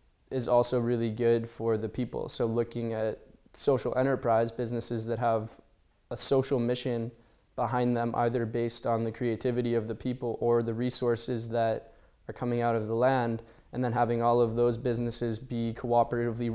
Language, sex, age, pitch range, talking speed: English, male, 10-29, 115-125 Hz, 170 wpm